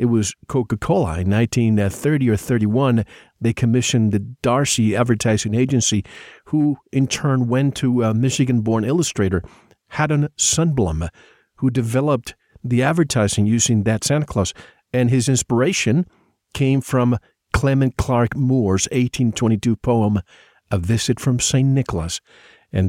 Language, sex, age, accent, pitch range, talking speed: English, male, 50-69, American, 105-135 Hz, 125 wpm